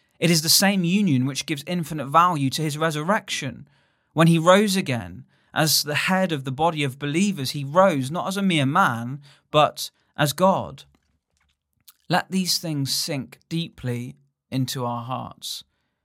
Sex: male